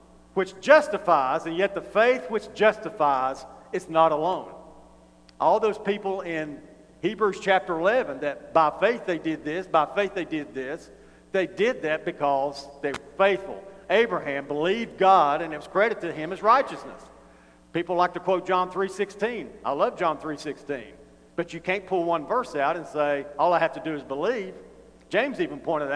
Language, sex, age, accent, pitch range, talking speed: English, male, 50-69, American, 155-200 Hz, 175 wpm